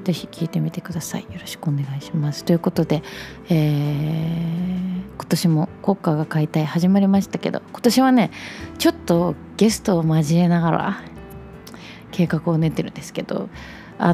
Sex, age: female, 20-39